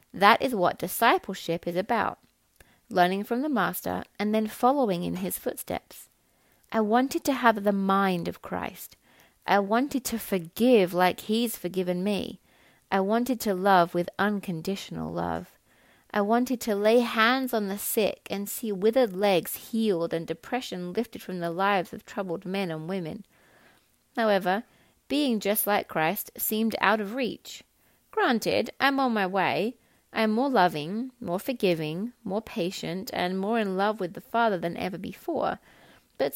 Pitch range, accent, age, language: 185-230 Hz, British, 30-49, English